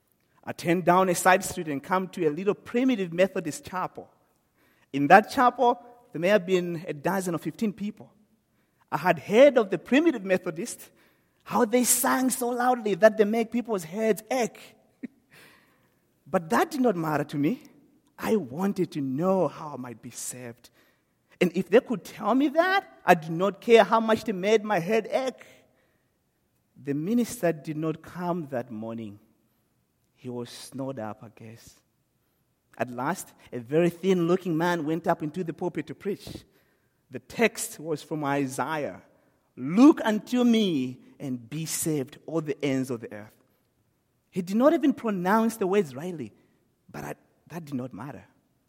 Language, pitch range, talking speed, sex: English, 145-220 Hz, 165 wpm, male